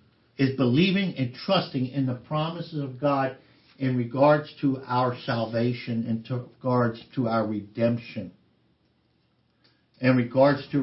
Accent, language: American, English